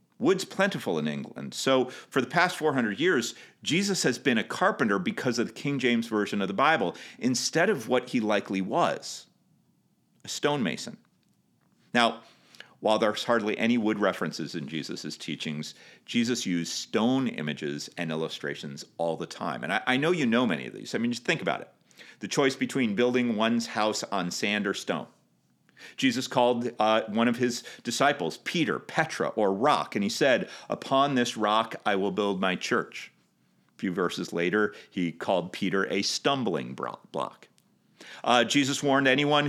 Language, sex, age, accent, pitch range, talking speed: English, male, 40-59, American, 100-130 Hz, 170 wpm